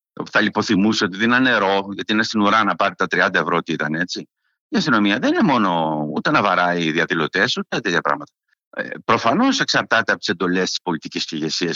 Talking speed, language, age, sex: 205 wpm, Greek, 60-79, male